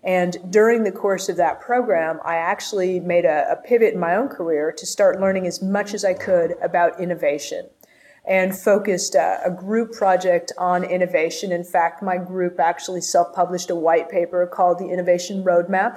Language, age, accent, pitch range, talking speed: English, 30-49, American, 175-200 Hz, 180 wpm